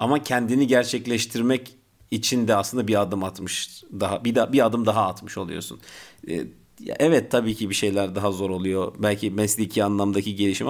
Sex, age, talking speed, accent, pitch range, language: male, 40-59, 150 wpm, native, 95-120 Hz, Turkish